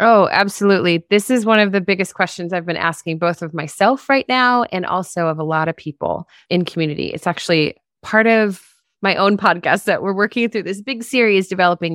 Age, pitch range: 30-49, 160-200 Hz